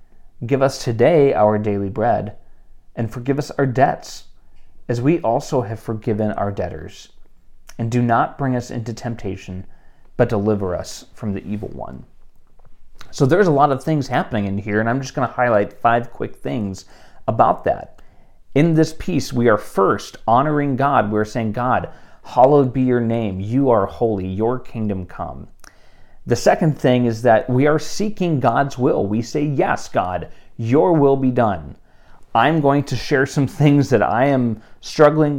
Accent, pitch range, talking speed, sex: American, 105-140 Hz, 170 wpm, male